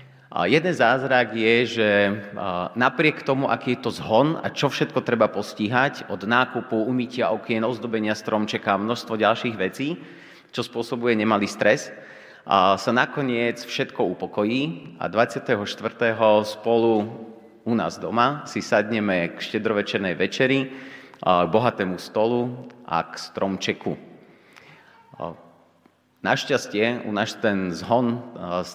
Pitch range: 100-120 Hz